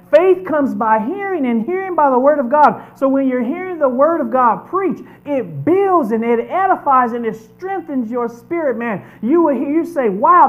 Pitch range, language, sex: 190-290 Hz, English, male